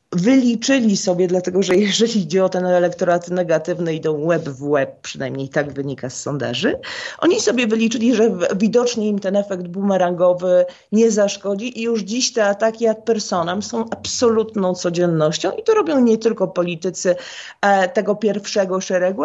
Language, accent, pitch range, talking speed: Polish, native, 185-235 Hz, 155 wpm